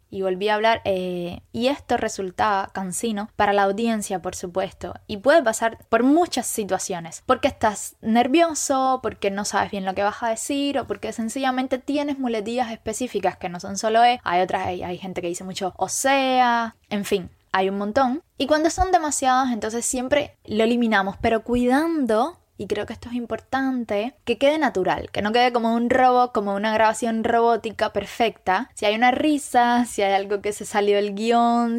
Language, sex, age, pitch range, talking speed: Spanish, female, 10-29, 205-255 Hz, 190 wpm